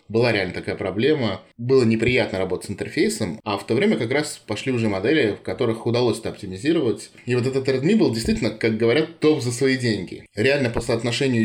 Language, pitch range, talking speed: Russian, 105-130 Hz, 200 wpm